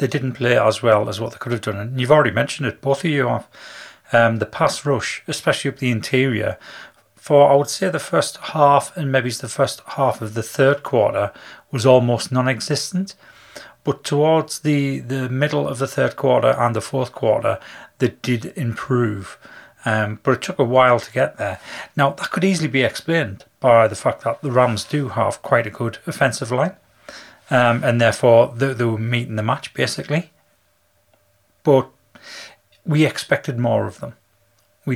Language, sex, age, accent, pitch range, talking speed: English, male, 30-49, British, 115-140 Hz, 185 wpm